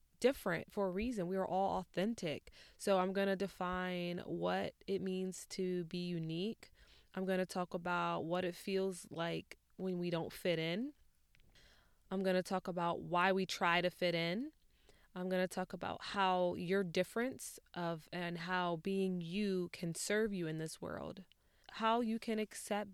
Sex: female